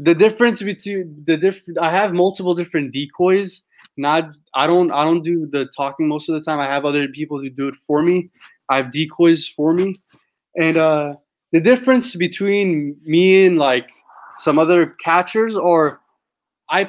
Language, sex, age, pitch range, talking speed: English, male, 20-39, 135-170 Hz, 175 wpm